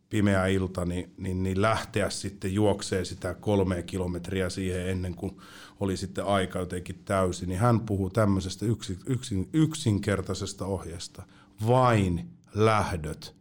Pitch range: 95-110 Hz